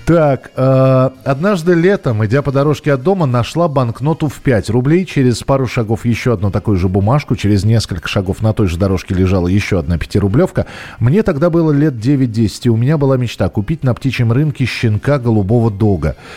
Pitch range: 105-135 Hz